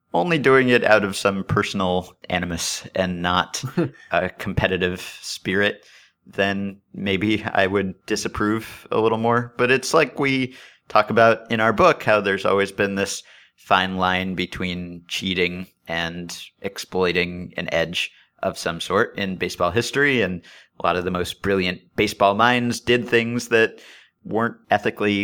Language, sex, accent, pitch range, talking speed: English, male, American, 90-110 Hz, 150 wpm